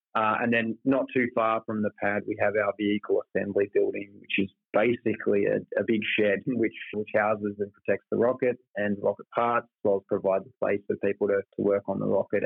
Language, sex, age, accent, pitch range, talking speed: English, male, 20-39, Australian, 100-105 Hz, 215 wpm